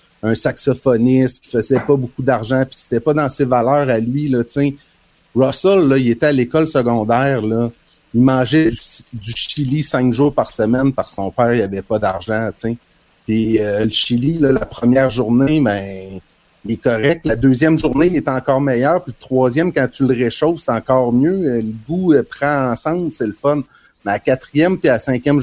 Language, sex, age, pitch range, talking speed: French, male, 30-49, 115-140 Hz, 205 wpm